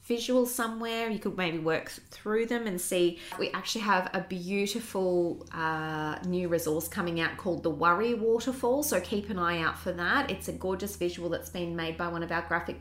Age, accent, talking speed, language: 20-39, Australian, 200 wpm, English